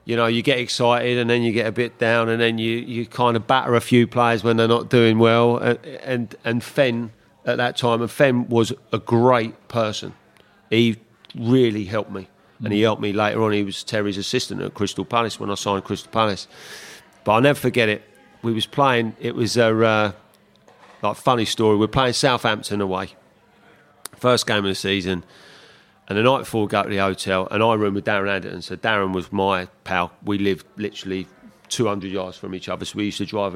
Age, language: 40-59, English